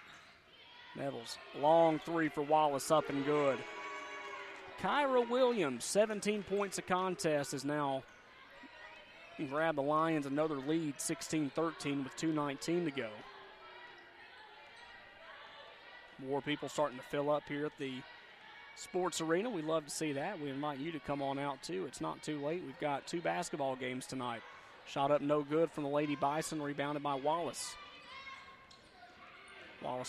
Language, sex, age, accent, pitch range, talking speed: English, male, 30-49, American, 135-165 Hz, 145 wpm